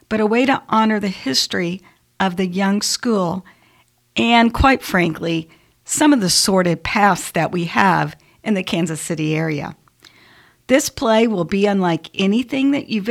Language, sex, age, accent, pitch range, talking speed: English, female, 50-69, American, 175-220 Hz, 160 wpm